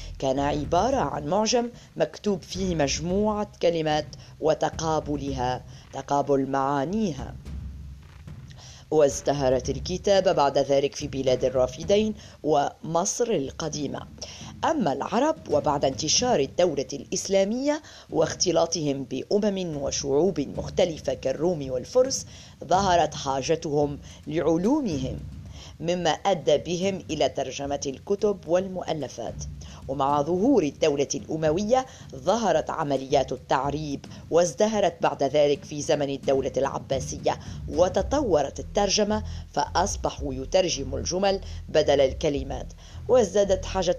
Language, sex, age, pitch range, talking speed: Arabic, female, 40-59, 135-190 Hz, 85 wpm